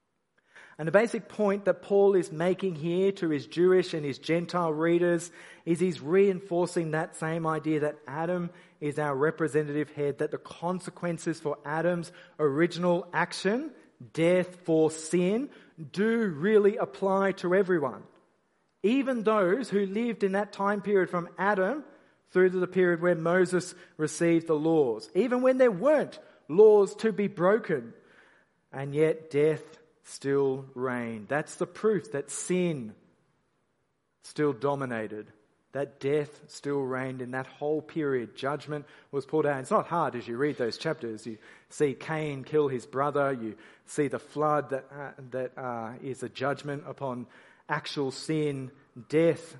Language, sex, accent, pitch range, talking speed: English, male, Australian, 140-185 Hz, 150 wpm